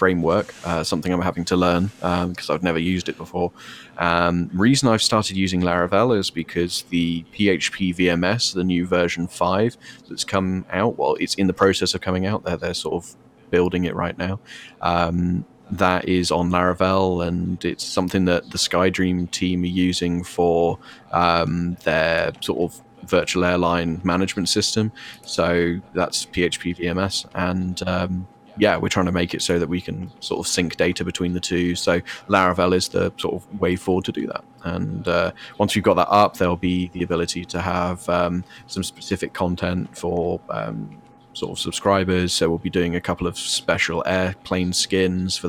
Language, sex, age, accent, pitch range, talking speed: English, male, 20-39, British, 85-95 Hz, 180 wpm